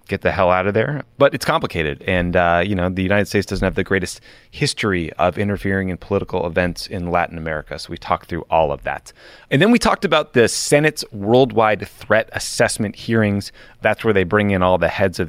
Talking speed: 220 wpm